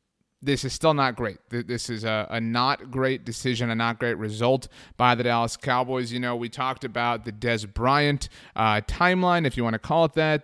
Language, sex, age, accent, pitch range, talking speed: English, male, 30-49, American, 120-150 Hz, 215 wpm